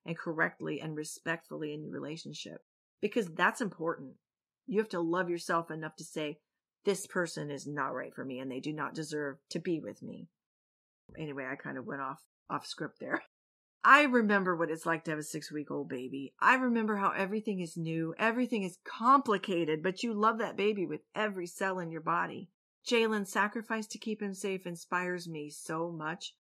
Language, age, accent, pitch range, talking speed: English, 40-59, American, 155-215 Hz, 190 wpm